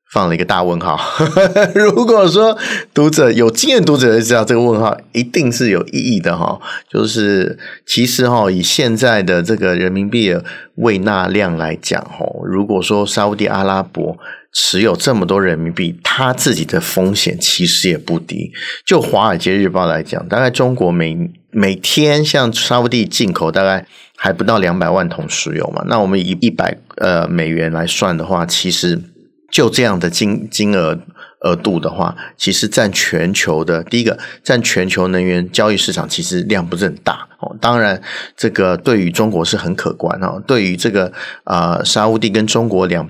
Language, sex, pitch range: Chinese, male, 90-120 Hz